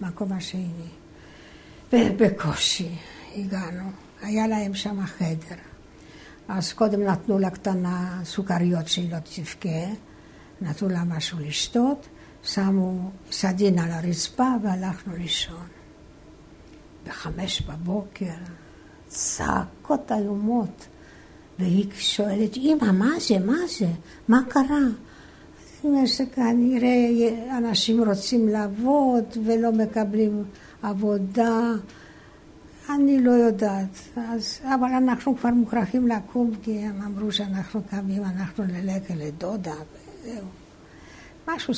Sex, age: female, 60-79